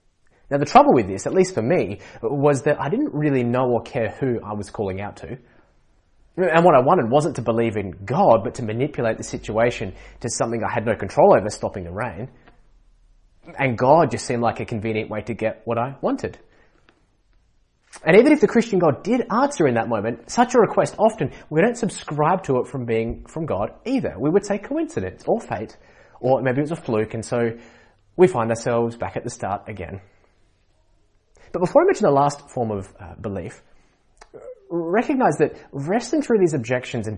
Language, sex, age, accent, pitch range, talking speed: English, male, 20-39, Australian, 115-160 Hz, 200 wpm